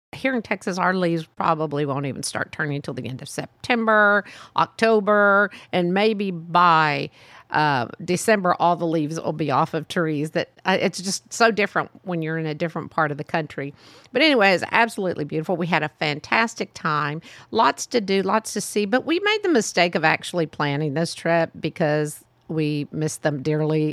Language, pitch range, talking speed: English, 155-200 Hz, 185 wpm